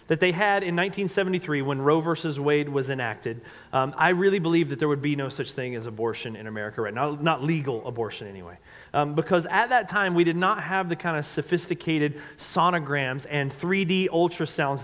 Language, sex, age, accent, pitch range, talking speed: English, male, 30-49, American, 145-190 Hz, 200 wpm